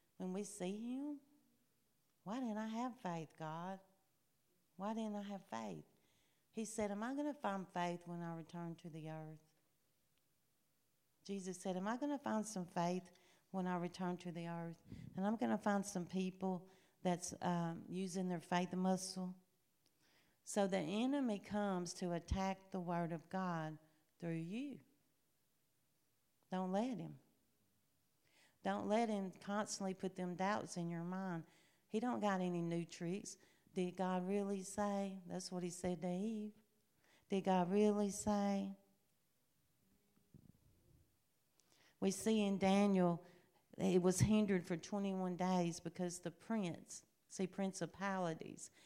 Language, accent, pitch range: English, American, 175-200 Hz